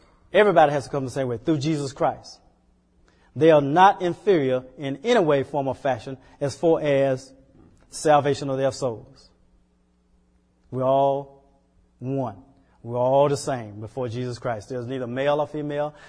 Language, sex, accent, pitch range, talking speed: English, male, American, 90-140 Hz, 155 wpm